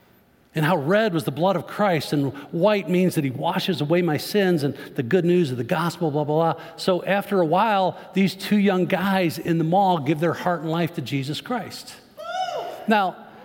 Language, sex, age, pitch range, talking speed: English, male, 50-69, 155-200 Hz, 210 wpm